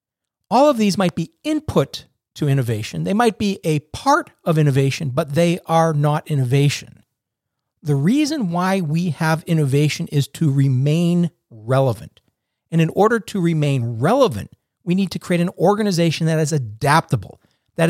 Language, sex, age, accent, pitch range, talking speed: English, male, 40-59, American, 135-170 Hz, 155 wpm